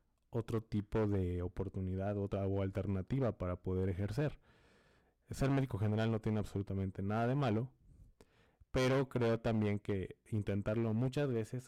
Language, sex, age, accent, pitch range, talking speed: Spanish, male, 20-39, Mexican, 95-110 Hz, 135 wpm